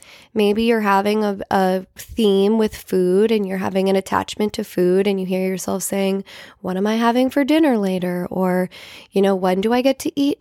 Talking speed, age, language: 210 wpm, 20-39, English